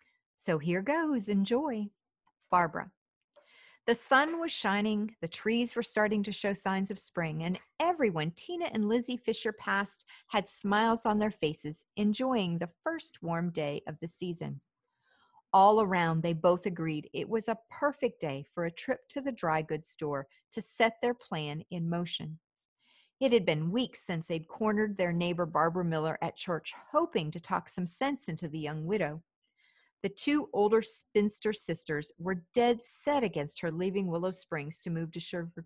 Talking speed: 170 wpm